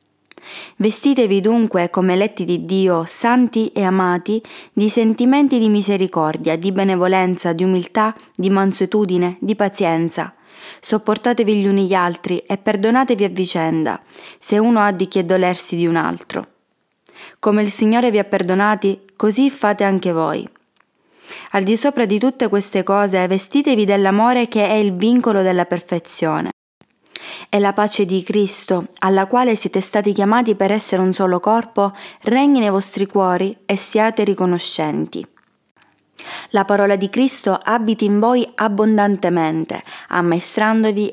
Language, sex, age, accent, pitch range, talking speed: Italian, female, 20-39, native, 185-220 Hz, 140 wpm